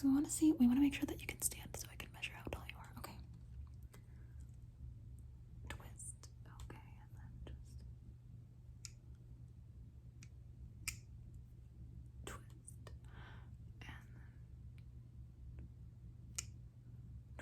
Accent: American